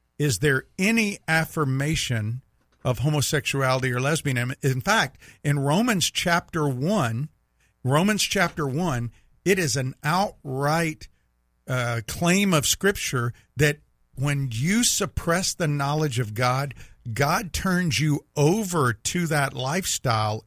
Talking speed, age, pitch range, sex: 115 wpm, 50-69, 125-155 Hz, male